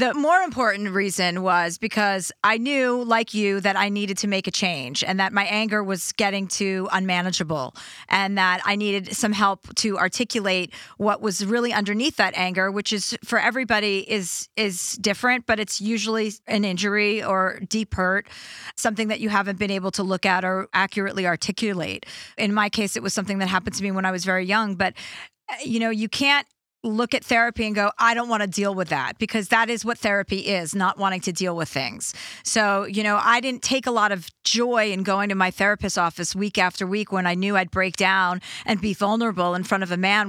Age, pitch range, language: 40-59, 190-220 Hz, English